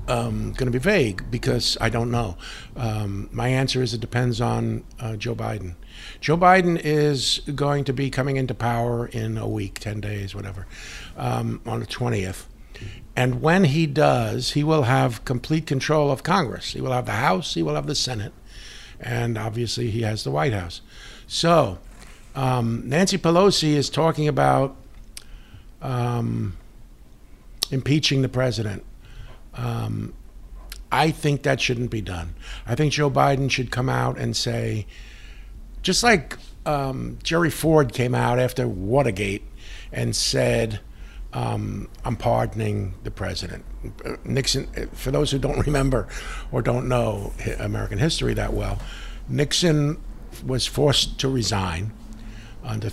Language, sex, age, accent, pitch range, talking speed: English, male, 60-79, American, 110-140 Hz, 145 wpm